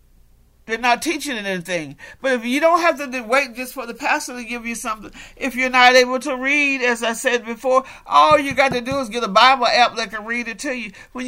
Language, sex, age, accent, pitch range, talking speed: English, male, 50-69, American, 215-290 Hz, 245 wpm